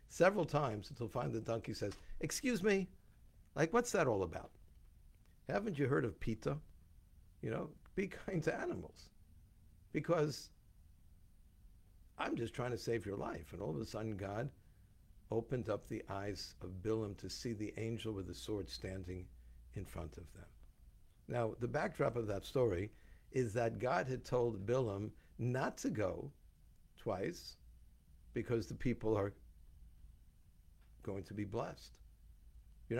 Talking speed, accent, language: 150 wpm, American, English